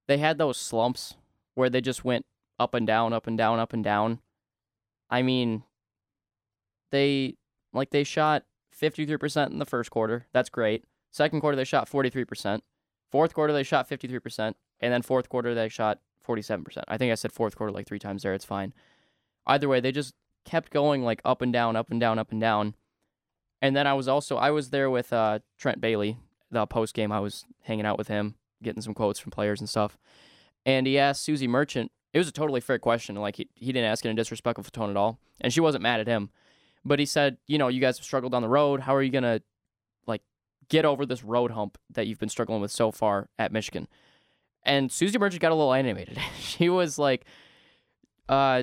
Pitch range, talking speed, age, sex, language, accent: 110-140 Hz, 220 wpm, 10-29, male, English, American